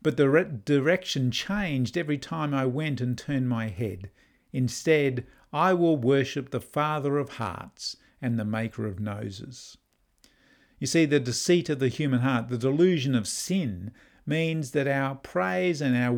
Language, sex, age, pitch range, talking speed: English, male, 50-69, 125-155 Hz, 160 wpm